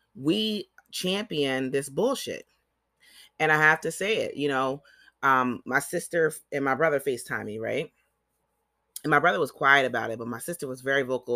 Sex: female